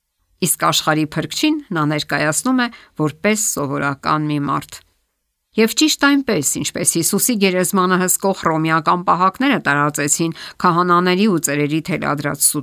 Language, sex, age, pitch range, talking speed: English, female, 60-79, 150-195 Hz, 105 wpm